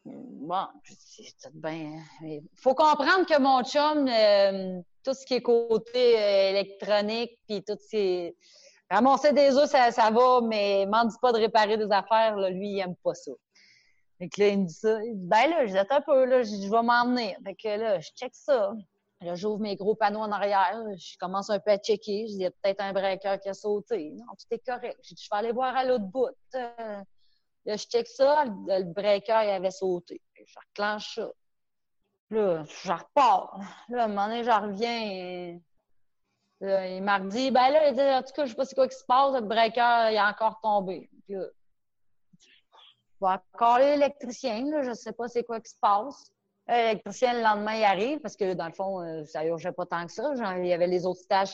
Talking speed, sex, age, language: 220 wpm, female, 30-49, French